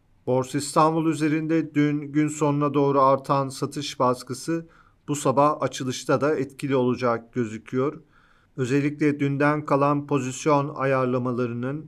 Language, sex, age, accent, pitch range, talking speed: Turkish, male, 40-59, native, 130-150 Hz, 110 wpm